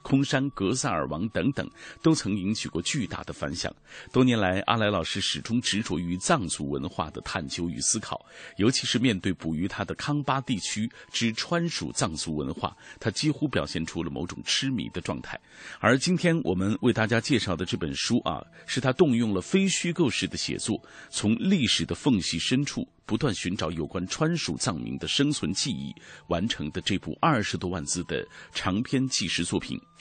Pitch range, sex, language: 95-135 Hz, male, Chinese